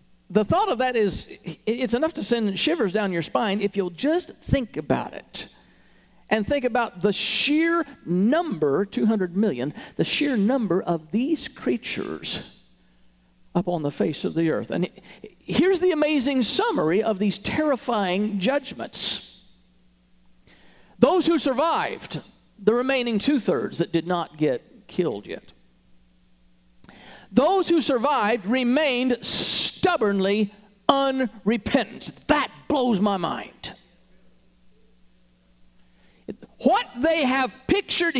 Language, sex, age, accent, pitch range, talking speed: English, male, 50-69, American, 185-295 Hz, 120 wpm